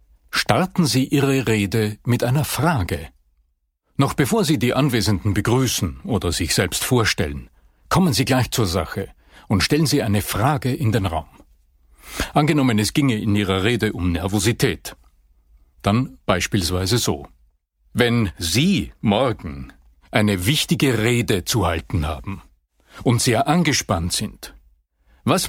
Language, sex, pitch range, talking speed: German, male, 80-130 Hz, 130 wpm